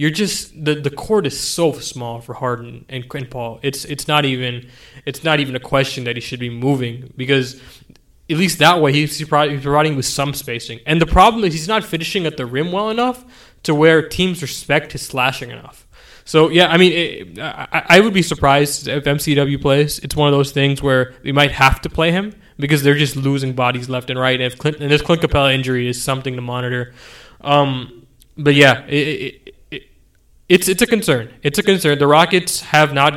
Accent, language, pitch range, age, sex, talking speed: American, English, 130-150 Hz, 20-39, male, 215 wpm